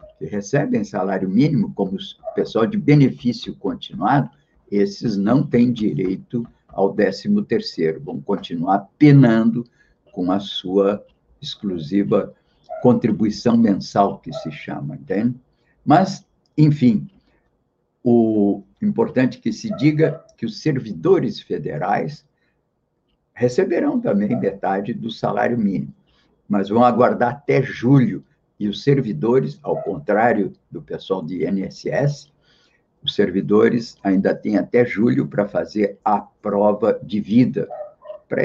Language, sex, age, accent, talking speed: Portuguese, male, 60-79, Brazilian, 115 wpm